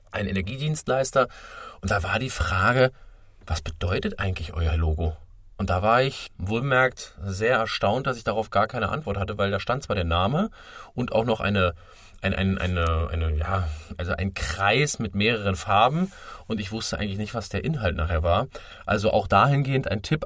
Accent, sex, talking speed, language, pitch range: German, male, 185 wpm, German, 95-130 Hz